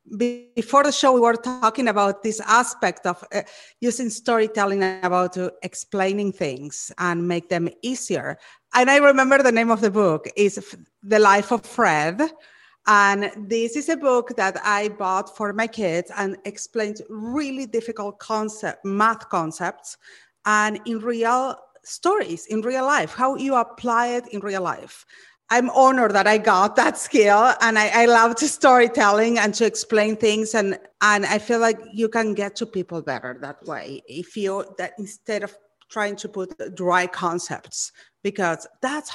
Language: English